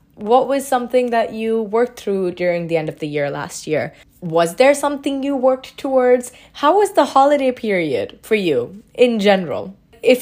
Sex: female